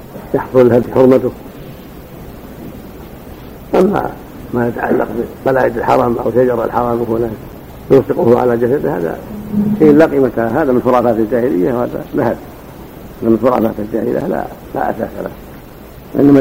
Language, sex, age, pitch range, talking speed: Arabic, male, 60-79, 115-135 Hz, 120 wpm